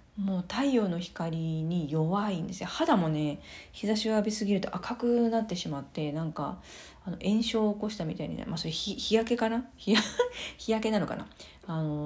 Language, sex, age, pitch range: Japanese, female, 40-59, 160-195 Hz